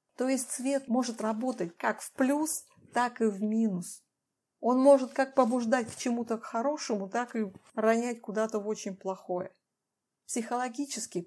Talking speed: 145 wpm